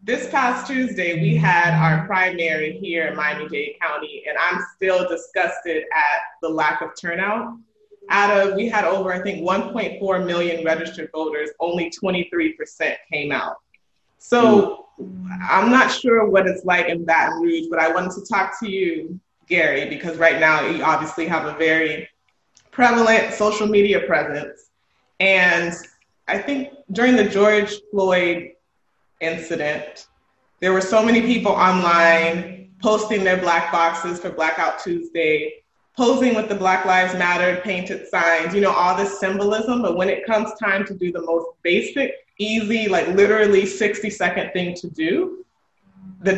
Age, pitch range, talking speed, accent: 20-39, 170-215 Hz, 155 wpm, American